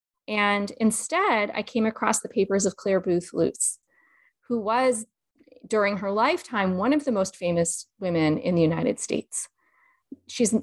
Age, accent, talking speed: 40-59, American, 150 wpm